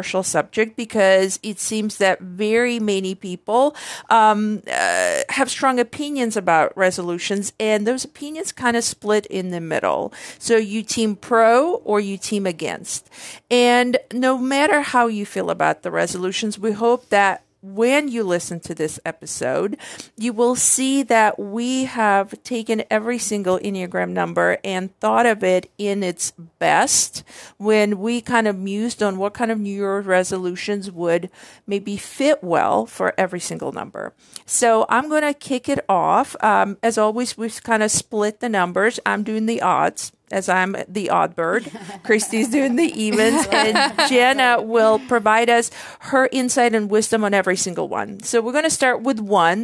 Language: English